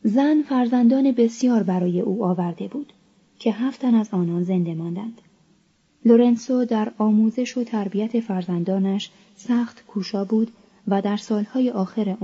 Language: Persian